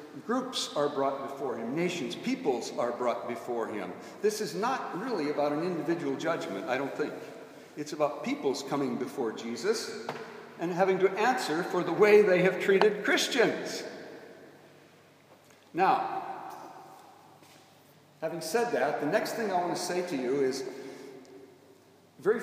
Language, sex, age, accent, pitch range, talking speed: English, male, 60-79, American, 150-225 Hz, 145 wpm